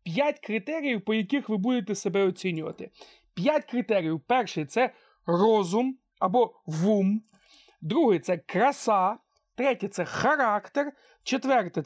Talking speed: 120 wpm